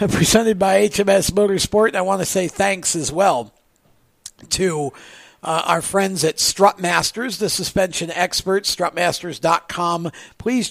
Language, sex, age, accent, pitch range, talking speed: English, male, 50-69, American, 150-190 Hz, 125 wpm